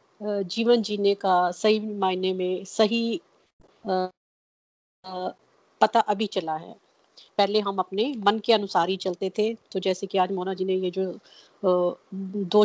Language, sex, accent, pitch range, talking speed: Hindi, female, native, 190-215 Hz, 140 wpm